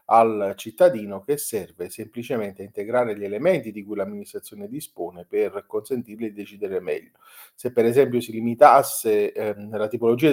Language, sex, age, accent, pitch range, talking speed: Italian, male, 40-59, native, 105-170 Hz, 150 wpm